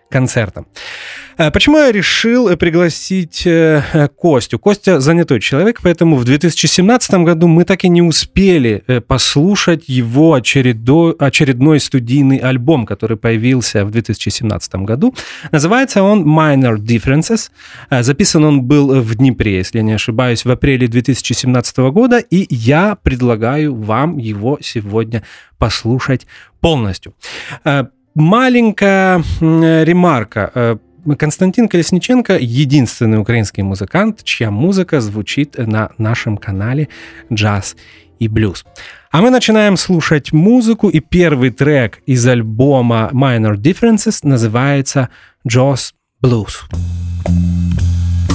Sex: male